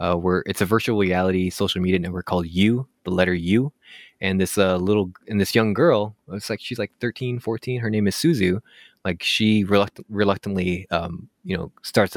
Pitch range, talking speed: 90-110 Hz, 200 wpm